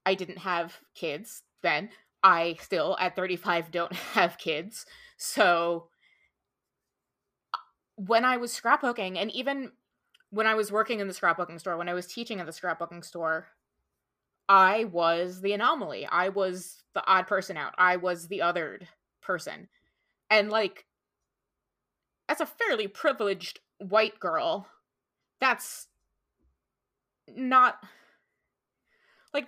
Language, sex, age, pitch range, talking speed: English, female, 20-39, 170-225 Hz, 125 wpm